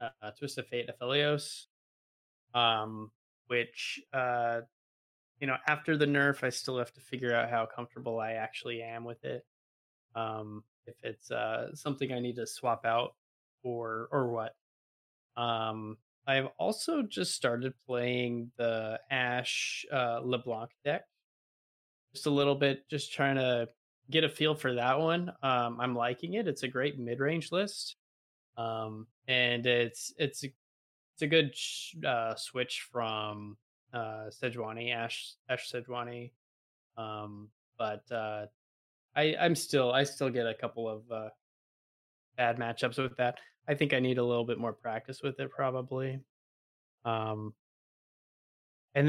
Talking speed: 145 wpm